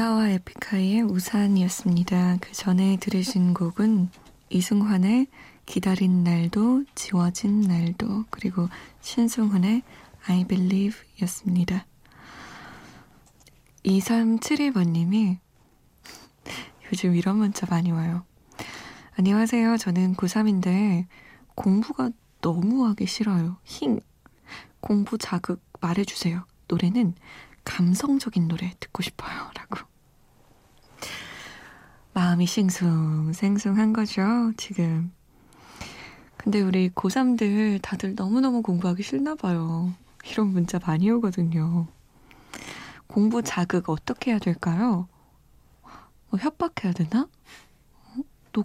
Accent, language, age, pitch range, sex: native, Korean, 20-39, 180-225 Hz, female